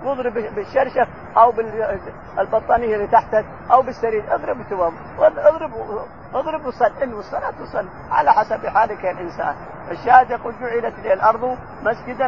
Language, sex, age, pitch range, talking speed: Arabic, male, 50-69, 205-245 Hz, 125 wpm